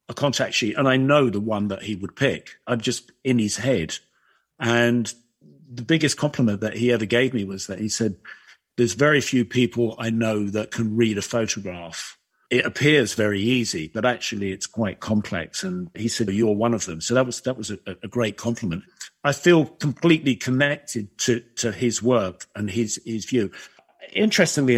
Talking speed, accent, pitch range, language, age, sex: 190 wpm, British, 110-145 Hz, English, 50-69, male